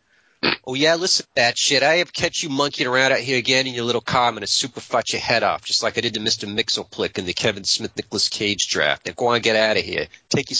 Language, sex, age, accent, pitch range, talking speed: English, male, 40-59, American, 110-170 Hz, 275 wpm